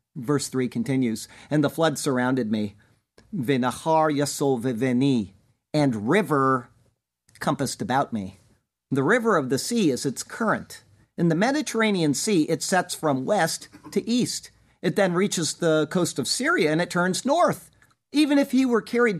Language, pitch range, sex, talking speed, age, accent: English, 140-190 Hz, male, 145 wpm, 50-69, American